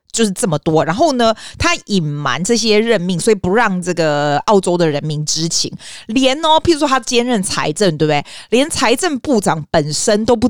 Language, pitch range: Chinese, 170-240 Hz